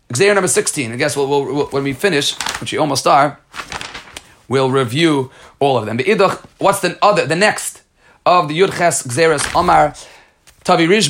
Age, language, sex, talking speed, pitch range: 30-49, Hebrew, male, 185 wpm, 140-185 Hz